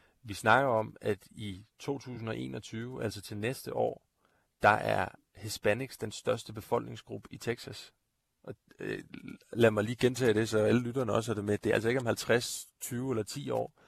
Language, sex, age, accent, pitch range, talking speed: Danish, male, 30-49, native, 110-125 Hz, 175 wpm